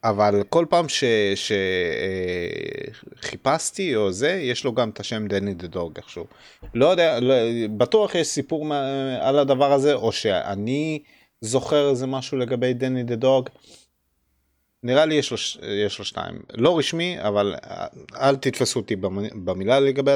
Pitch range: 105-145 Hz